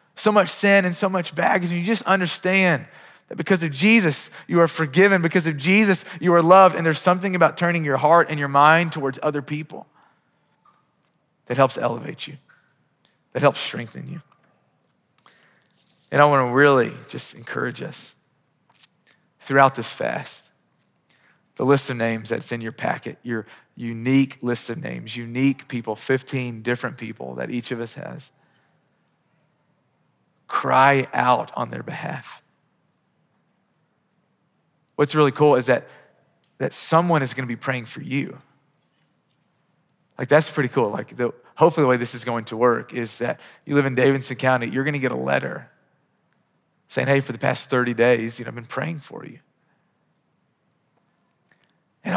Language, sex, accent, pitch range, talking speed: English, male, American, 130-170 Hz, 160 wpm